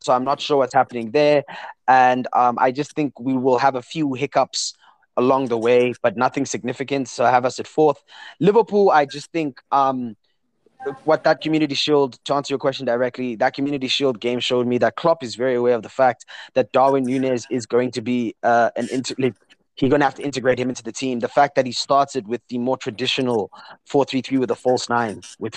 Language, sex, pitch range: English, male, 120-150 Hz